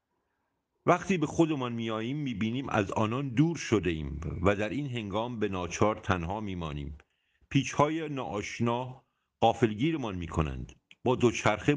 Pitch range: 95-135 Hz